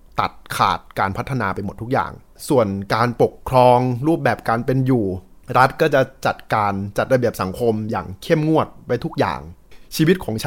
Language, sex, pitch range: Thai, male, 105-140 Hz